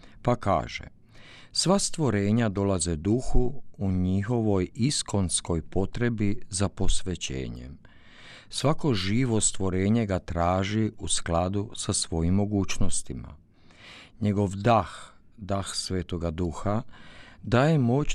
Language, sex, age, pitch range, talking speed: Croatian, male, 50-69, 90-120 Hz, 95 wpm